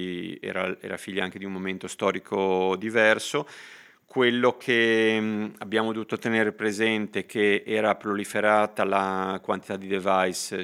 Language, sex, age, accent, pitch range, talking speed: Italian, male, 30-49, native, 95-110 Hz, 130 wpm